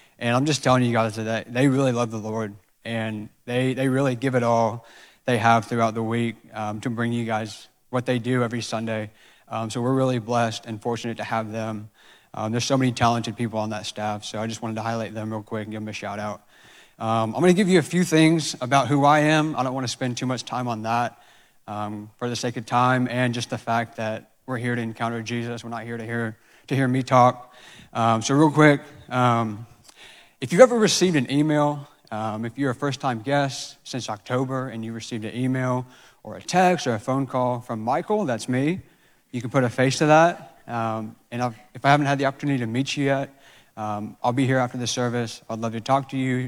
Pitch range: 115-130 Hz